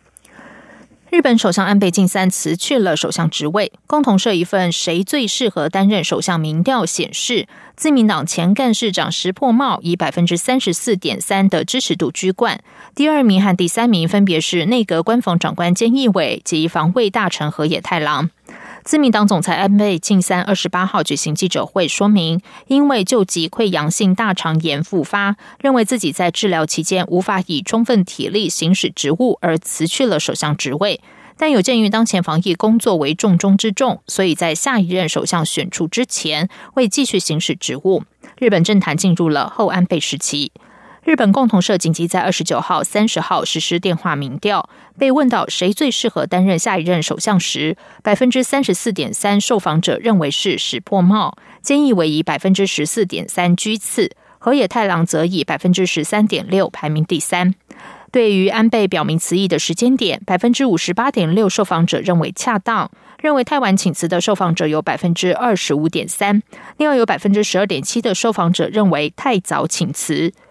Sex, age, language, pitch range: female, 20-39, German, 170-225 Hz